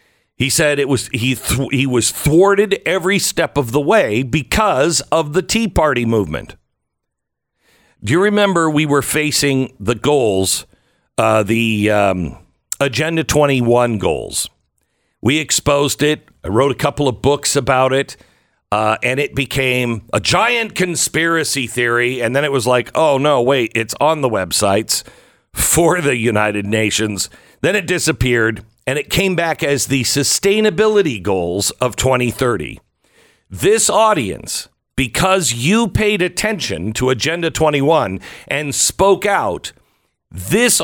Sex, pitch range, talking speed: male, 110-155 Hz, 140 wpm